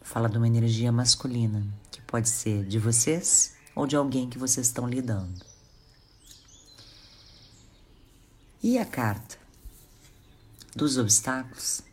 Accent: Brazilian